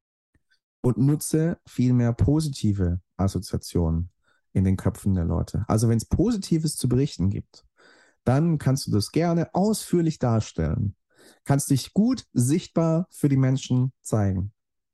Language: German